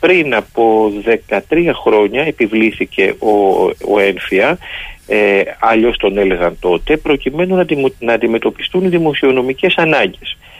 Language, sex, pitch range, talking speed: Greek, male, 115-185 Hz, 115 wpm